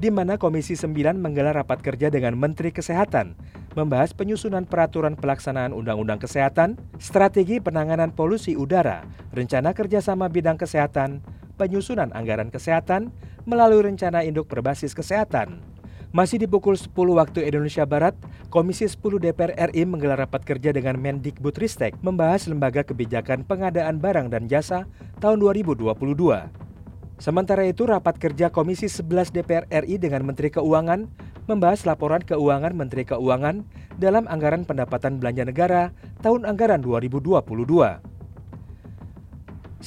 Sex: male